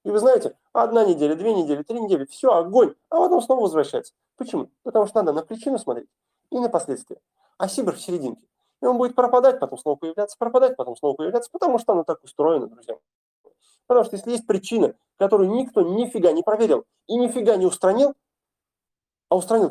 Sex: male